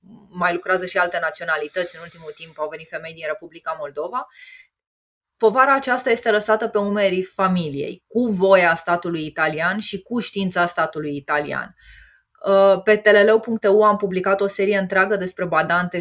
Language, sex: Romanian, female